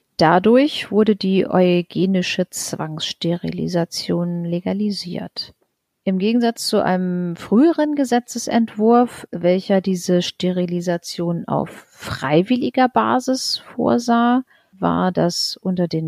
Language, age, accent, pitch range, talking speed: German, 40-59, German, 175-215 Hz, 85 wpm